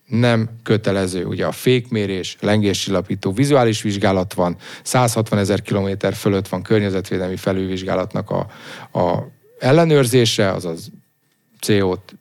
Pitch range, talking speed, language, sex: 100-125 Hz, 105 wpm, English, male